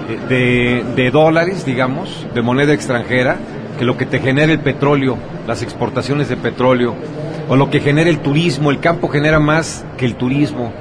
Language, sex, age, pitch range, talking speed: Spanish, male, 40-59, 125-150 Hz, 170 wpm